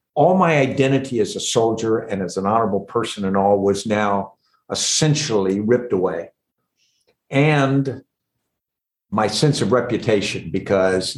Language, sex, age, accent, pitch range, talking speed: English, male, 60-79, American, 105-135 Hz, 130 wpm